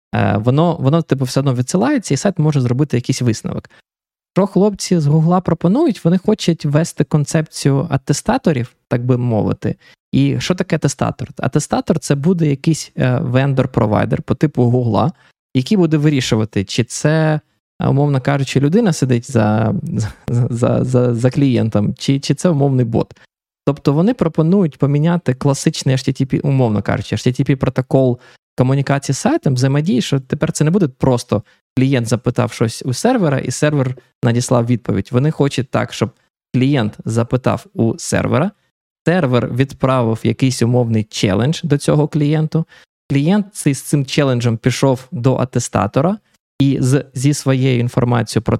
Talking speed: 145 wpm